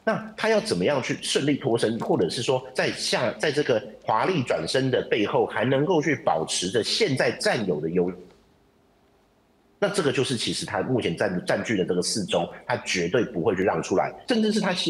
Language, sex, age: Chinese, male, 50-69